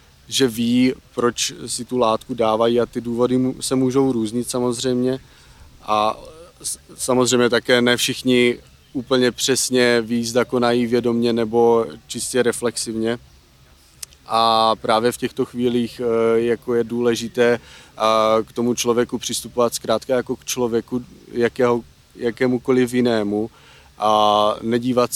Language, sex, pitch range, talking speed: Slovak, male, 115-125 Hz, 115 wpm